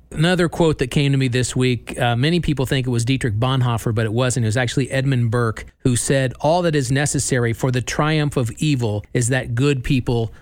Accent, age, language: American, 40-59, English